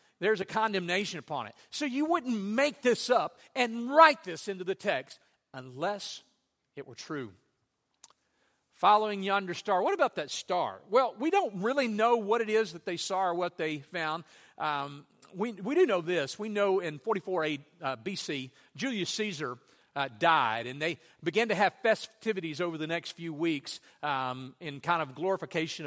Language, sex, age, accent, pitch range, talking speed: English, male, 50-69, American, 155-205 Hz, 175 wpm